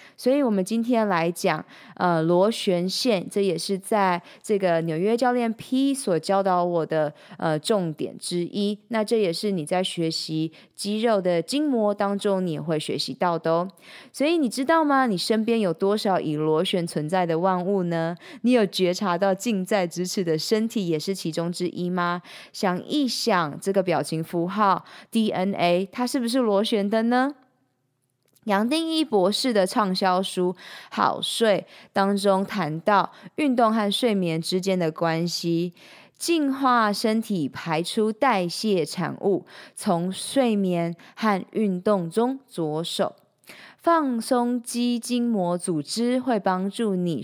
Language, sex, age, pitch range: Chinese, female, 20-39, 175-230 Hz